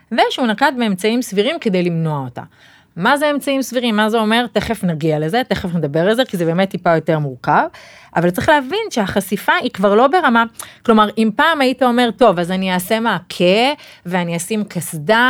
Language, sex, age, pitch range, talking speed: Hebrew, female, 30-49, 170-220 Hz, 190 wpm